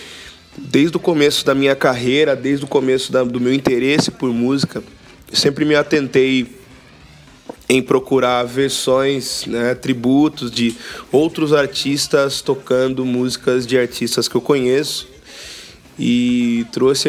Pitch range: 120-140 Hz